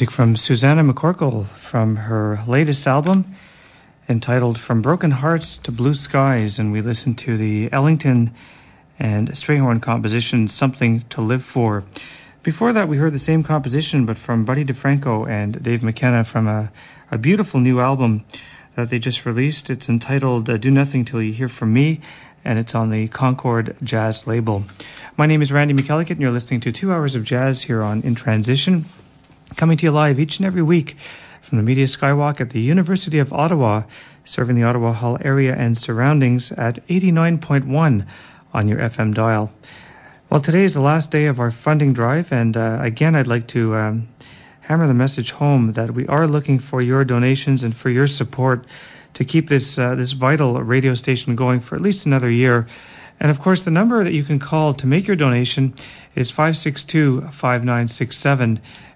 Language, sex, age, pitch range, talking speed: English, male, 40-59, 120-150 Hz, 180 wpm